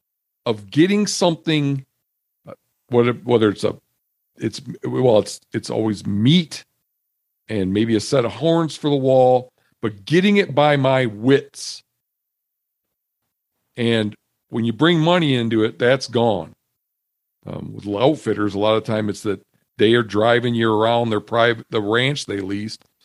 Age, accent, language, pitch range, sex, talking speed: 50-69, American, English, 105-130 Hz, male, 150 wpm